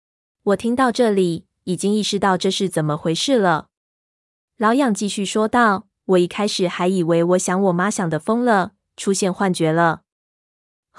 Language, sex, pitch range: Chinese, female, 175-210 Hz